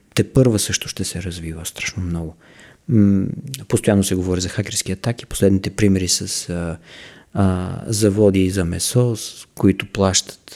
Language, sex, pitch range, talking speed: Bulgarian, male, 95-115 Hz, 155 wpm